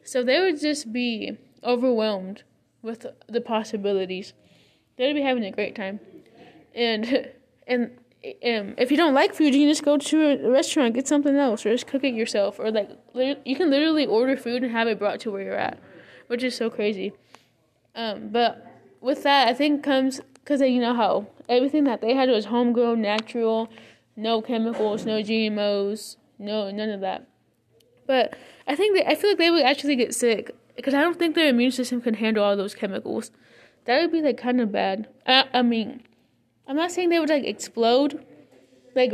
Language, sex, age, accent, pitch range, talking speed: English, female, 10-29, American, 215-270 Hz, 195 wpm